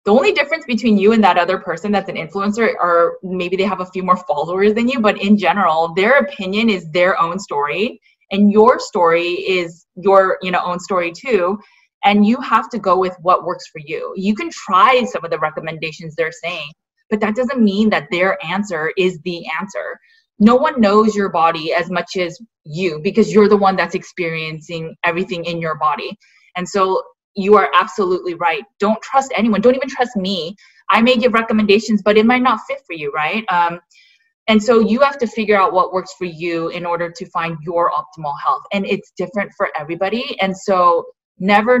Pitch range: 175-215 Hz